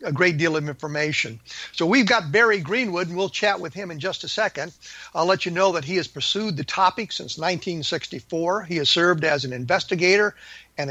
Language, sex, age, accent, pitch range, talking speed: English, male, 50-69, American, 150-180 Hz, 210 wpm